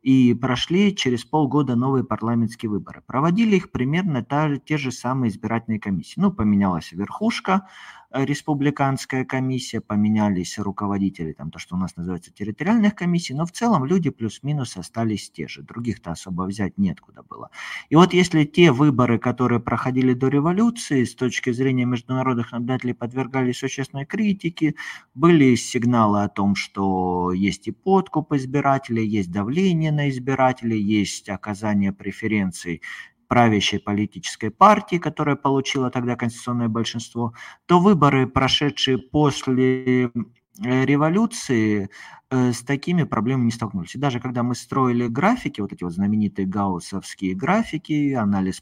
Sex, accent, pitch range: male, native, 105-145 Hz